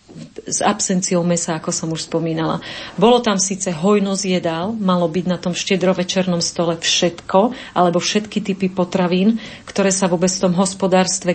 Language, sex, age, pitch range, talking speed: Slovak, female, 40-59, 180-210 Hz, 155 wpm